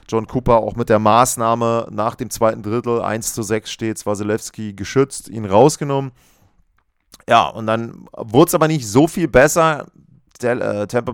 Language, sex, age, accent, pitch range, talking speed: German, male, 30-49, German, 105-120 Hz, 165 wpm